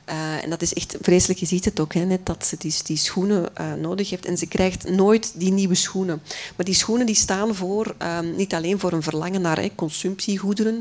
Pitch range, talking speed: 170-210 Hz, 230 wpm